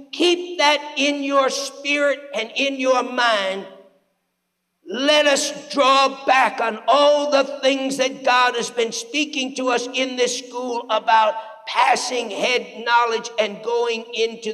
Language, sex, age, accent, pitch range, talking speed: English, male, 50-69, American, 190-275 Hz, 140 wpm